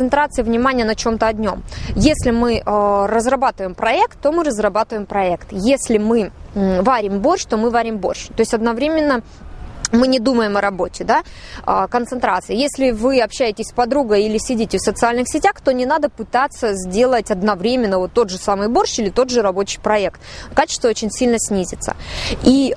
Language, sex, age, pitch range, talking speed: Russian, female, 20-39, 200-255 Hz, 170 wpm